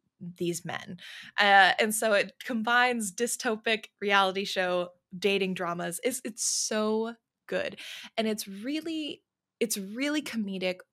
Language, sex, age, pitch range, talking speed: English, female, 20-39, 180-220 Hz, 120 wpm